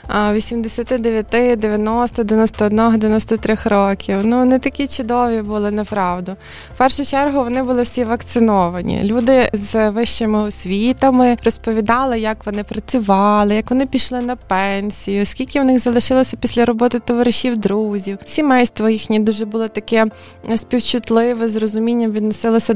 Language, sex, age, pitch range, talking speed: Ukrainian, female, 20-39, 215-250 Hz, 125 wpm